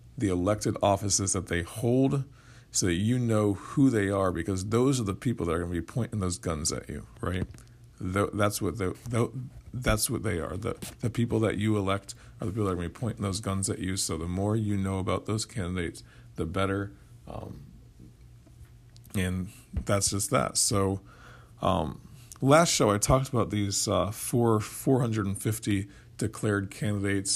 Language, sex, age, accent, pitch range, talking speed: English, male, 40-59, American, 95-115 Hz, 180 wpm